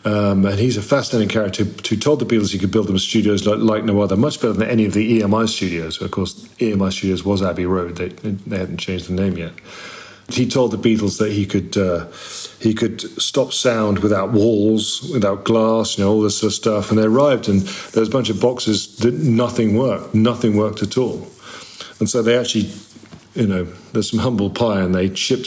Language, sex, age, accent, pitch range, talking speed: English, male, 40-59, British, 100-115 Hz, 225 wpm